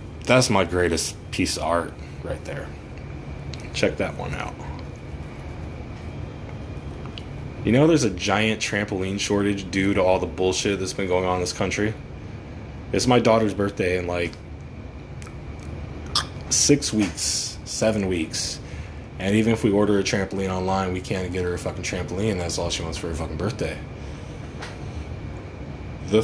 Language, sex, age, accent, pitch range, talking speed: English, male, 20-39, American, 85-105 Hz, 150 wpm